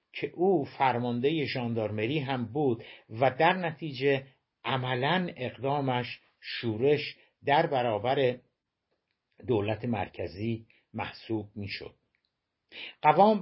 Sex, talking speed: male, 95 wpm